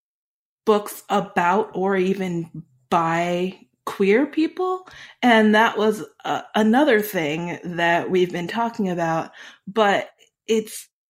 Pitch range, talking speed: 175-220 Hz, 110 wpm